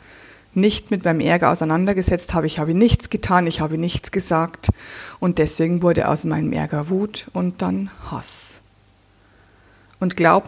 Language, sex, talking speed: German, female, 150 wpm